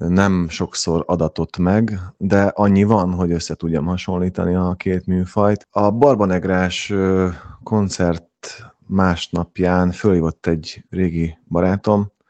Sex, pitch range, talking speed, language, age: male, 80-90 Hz, 105 wpm, Hungarian, 30-49